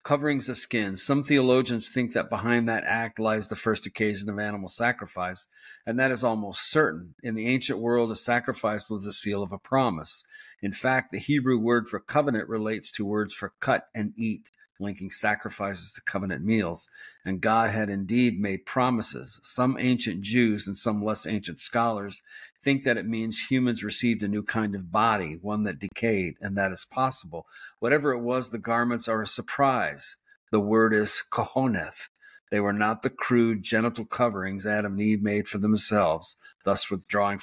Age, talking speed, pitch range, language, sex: 50-69, 180 wpm, 100-115 Hz, English, male